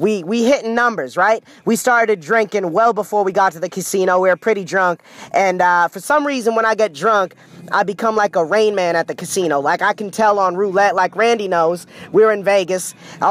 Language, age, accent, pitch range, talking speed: English, 20-39, American, 180-220 Hz, 230 wpm